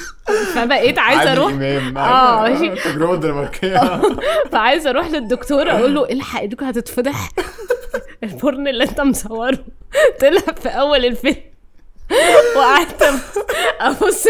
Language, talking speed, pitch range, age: Arabic, 90 wpm, 240-310 Hz, 20-39